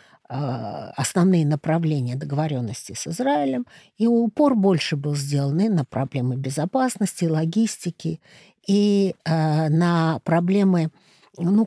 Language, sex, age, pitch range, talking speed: Russian, female, 50-69, 150-200 Hz, 100 wpm